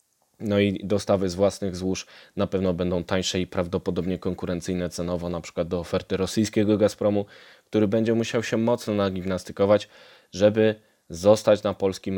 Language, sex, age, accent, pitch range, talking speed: Polish, male, 20-39, native, 90-105 Hz, 150 wpm